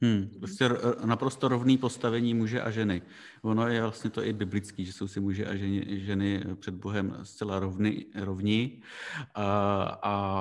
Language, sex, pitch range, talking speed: Slovak, male, 95-110 Hz, 160 wpm